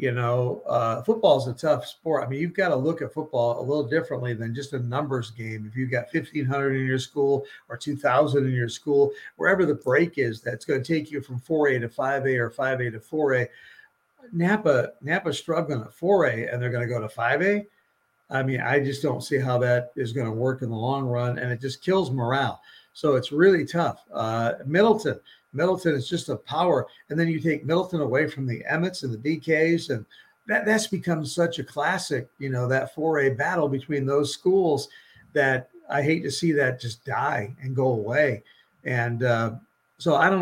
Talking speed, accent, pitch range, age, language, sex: 205 wpm, American, 125-155 Hz, 50-69, English, male